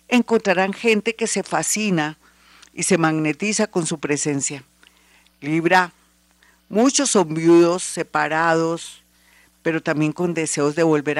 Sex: female